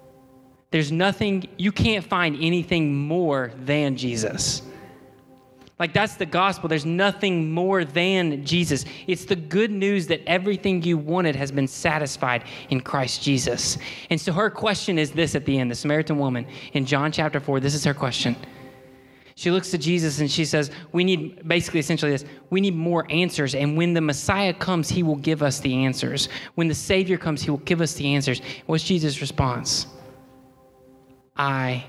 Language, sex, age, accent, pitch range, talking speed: English, male, 20-39, American, 130-160 Hz, 175 wpm